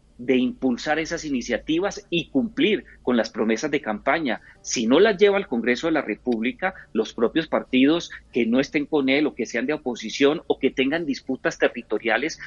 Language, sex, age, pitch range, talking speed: Spanish, male, 40-59, 120-165 Hz, 185 wpm